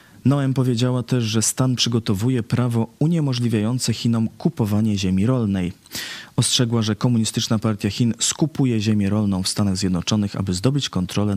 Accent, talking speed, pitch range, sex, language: native, 135 wpm, 95-125 Hz, male, Polish